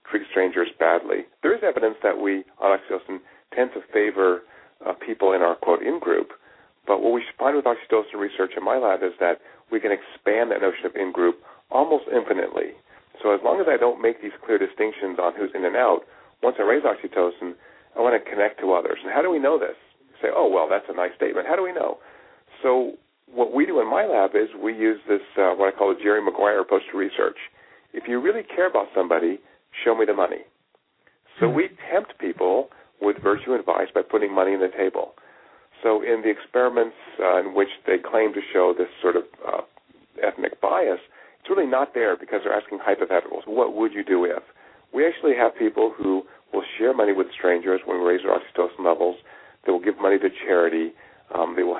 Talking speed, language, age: 210 wpm, English, 50-69